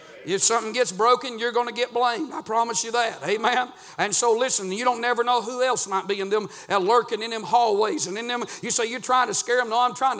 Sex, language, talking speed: male, English, 255 wpm